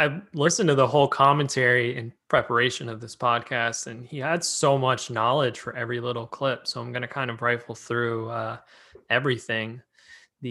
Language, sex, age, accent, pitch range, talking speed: English, male, 20-39, American, 120-135 Hz, 185 wpm